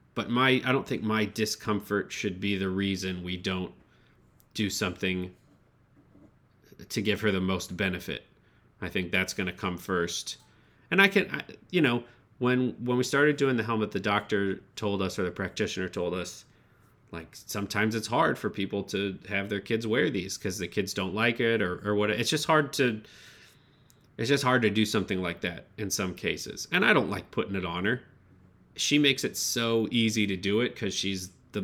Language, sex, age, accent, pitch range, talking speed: English, male, 30-49, American, 95-120 Hz, 200 wpm